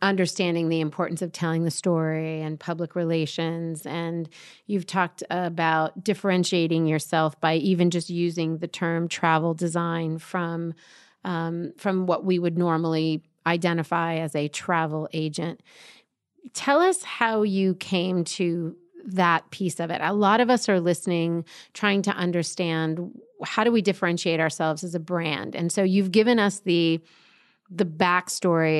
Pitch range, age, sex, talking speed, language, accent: 165-195 Hz, 30-49, female, 150 wpm, English, American